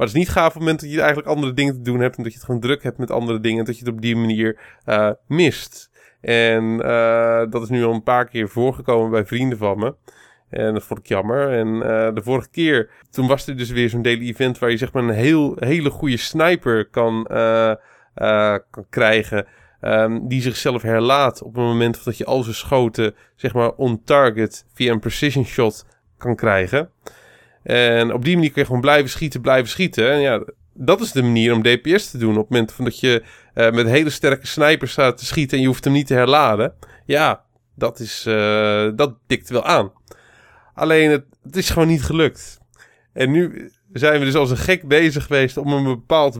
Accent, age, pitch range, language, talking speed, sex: Dutch, 20-39, 115-140 Hz, Dutch, 220 wpm, male